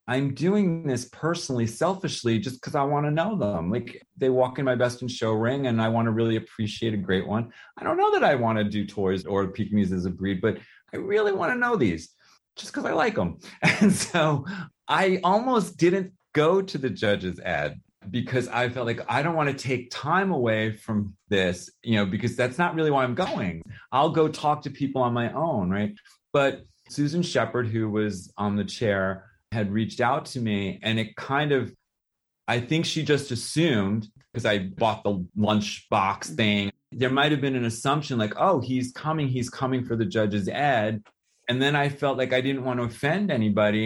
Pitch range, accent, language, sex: 110-155 Hz, American, English, male